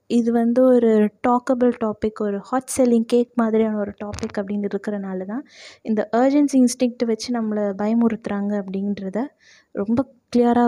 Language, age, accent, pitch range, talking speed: Tamil, 20-39, native, 215-255 Hz, 135 wpm